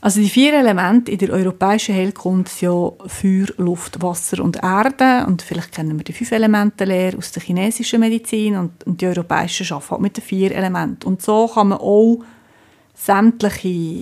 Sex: female